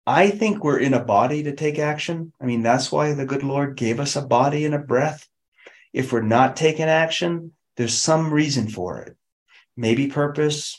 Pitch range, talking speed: 115-150 Hz, 195 wpm